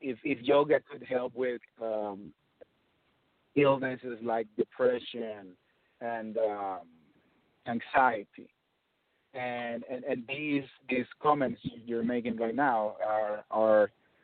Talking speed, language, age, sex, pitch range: 105 wpm, English, 50-69, male, 115-145 Hz